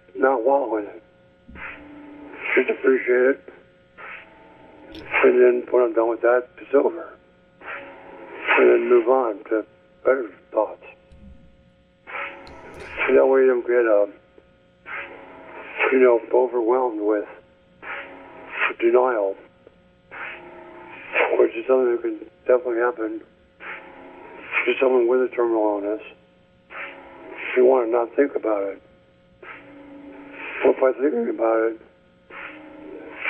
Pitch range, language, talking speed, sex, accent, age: 105-130 Hz, English, 105 wpm, male, American, 60-79